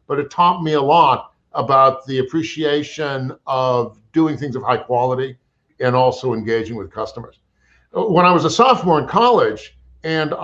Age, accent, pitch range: 50-69, American, 125-155 Hz